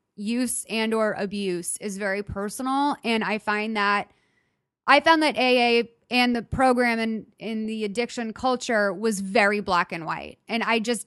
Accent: American